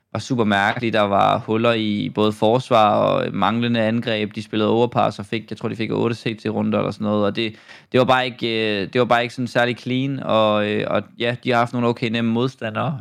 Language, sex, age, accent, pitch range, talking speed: Danish, male, 20-39, native, 110-125 Hz, 230 wpm